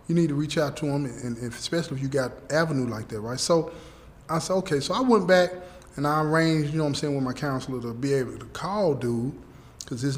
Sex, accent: male, American